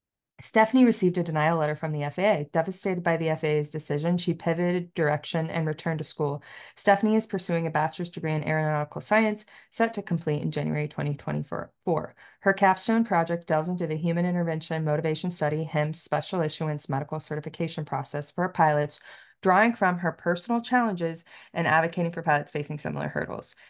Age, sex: 20-39, female